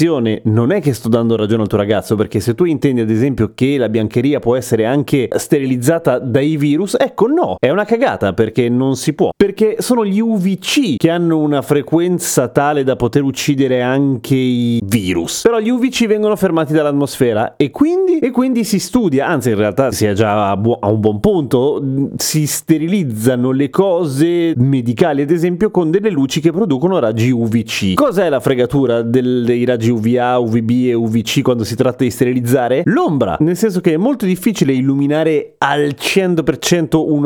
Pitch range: 120-165 Hz